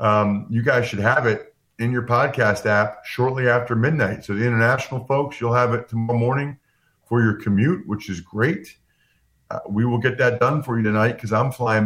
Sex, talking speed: male, 200 wpm